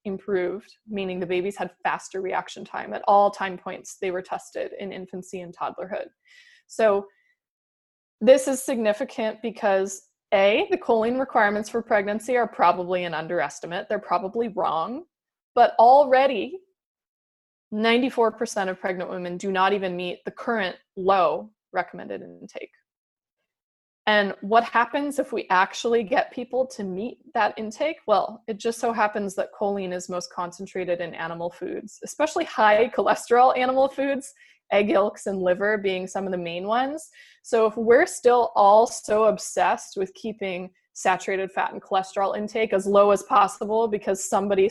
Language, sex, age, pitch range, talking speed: English, female, 20-39, 195-250 Hz, 150 wpm